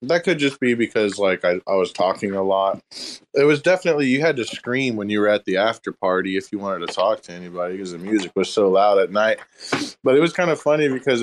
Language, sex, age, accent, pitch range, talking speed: English, male, 20-39, American, 105-150 Hz, 255 wpm